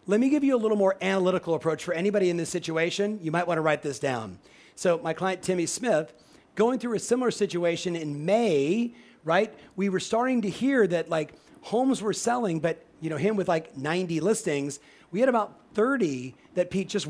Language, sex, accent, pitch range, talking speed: English, male, American, 155-210 Hz, 205 wpm